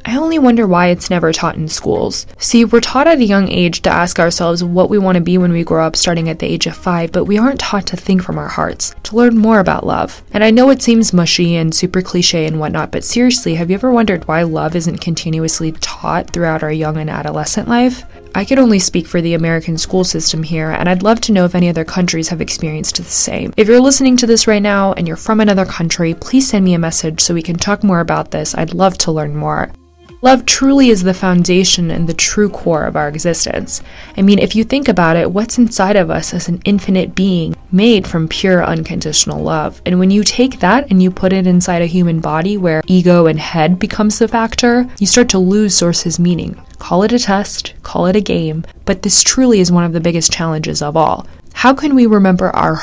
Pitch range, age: 165-210 Hz, 20-39